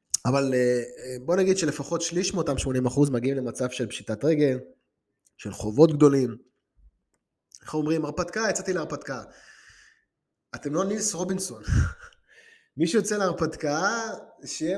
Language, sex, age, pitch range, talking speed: Hebrew, male, 20-39, 130-190 Hz, 115 wpm